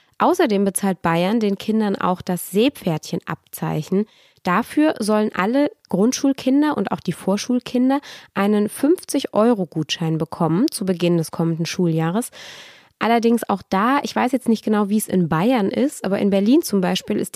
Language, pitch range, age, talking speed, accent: German, 175-230 Hz, 20-39, 150 wpm, German